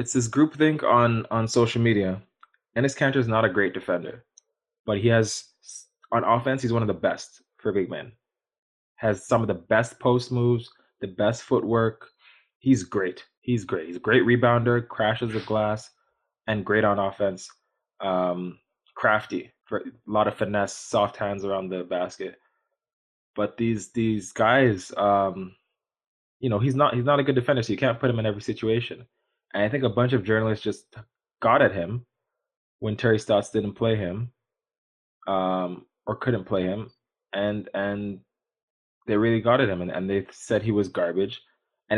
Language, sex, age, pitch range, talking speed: English, male, 20-39, 100-120 Hz, 175 wpm